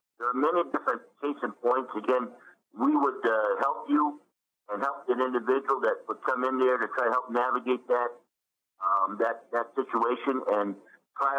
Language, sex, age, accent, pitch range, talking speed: English, male, 50-69, American, 110-135 Hz, 180 wpm